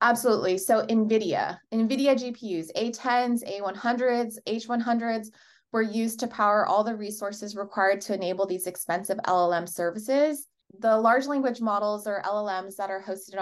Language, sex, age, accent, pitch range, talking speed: English, female, 20-39, American, 195-235 Hz, 140 wpm